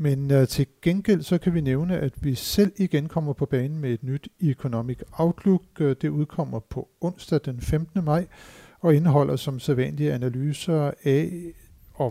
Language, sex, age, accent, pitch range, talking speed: Danish, male, 60-79, native, 130-160 Hz, 170 wpm